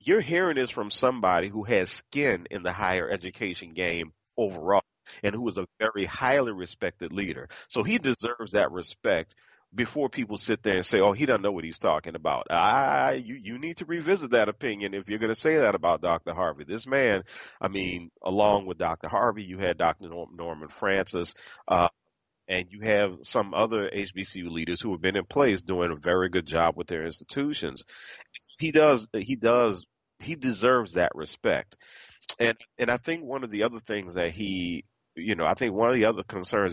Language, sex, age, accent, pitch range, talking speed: English, male, 40-59, American, 90-115 Hz, 195 wpm